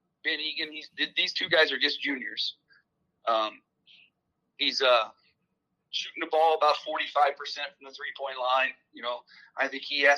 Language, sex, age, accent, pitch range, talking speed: English, male, 30-49, American, 135-160 Hz, 175 wpm